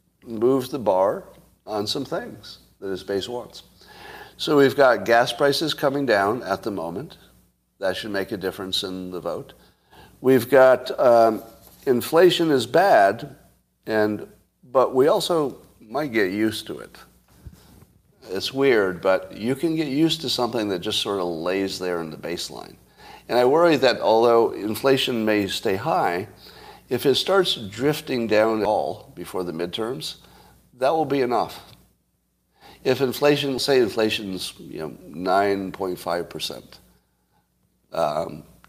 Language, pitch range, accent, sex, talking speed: English, 95-140 Hz, American, male, 140 wpm